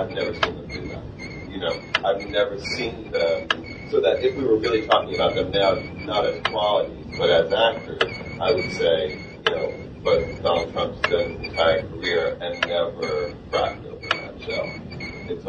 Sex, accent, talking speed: male, American, 180 wpm